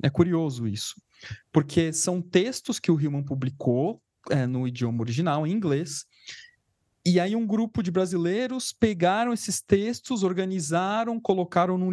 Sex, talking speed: male, 135 wpm